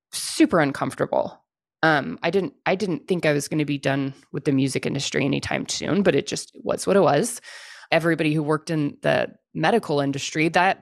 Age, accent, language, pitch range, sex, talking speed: 20-39, American, English, 150-215 Hz, female, 195 wpm